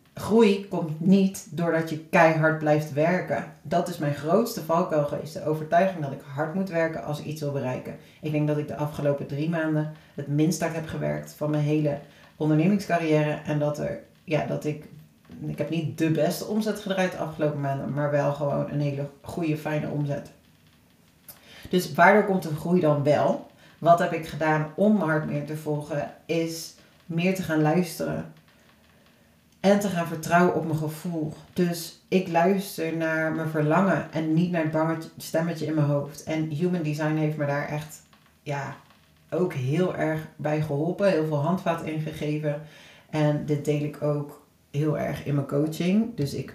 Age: 40-59